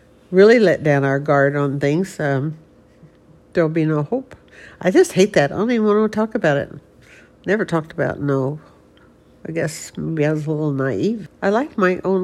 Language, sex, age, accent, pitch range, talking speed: English, female, 60-79, American, 160-205 Hz, 195 wpm